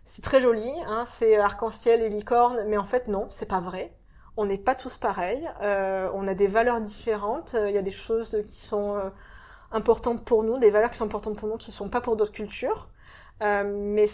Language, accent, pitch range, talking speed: French, French, 205-235 Hz, 225 wpm